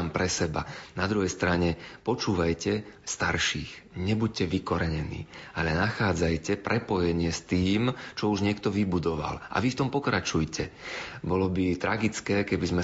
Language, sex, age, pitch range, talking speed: Slovak, male, 40-59, 85-105 Hz, 130 wpm